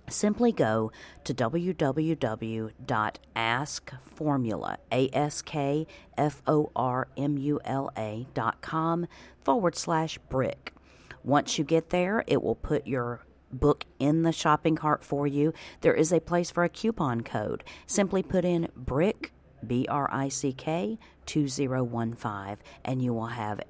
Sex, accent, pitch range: female, American, 115-150 Hz